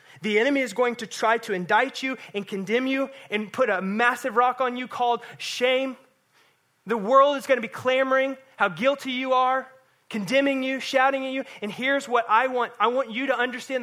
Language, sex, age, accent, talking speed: English, male, 20-39, American, 205 wpm